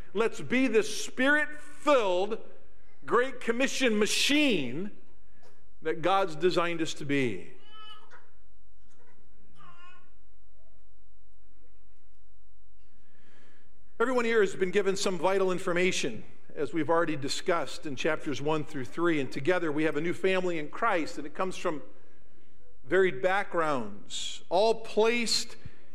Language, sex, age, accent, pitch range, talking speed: English, male, 50-69, American, 150-220 Hz, 110 wpm